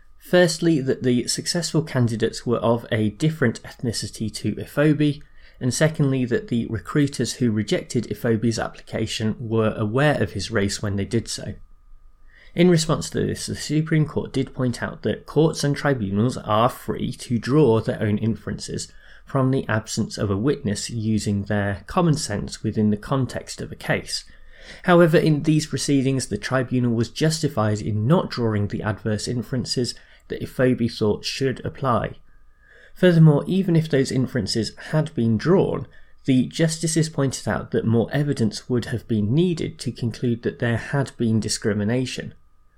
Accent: British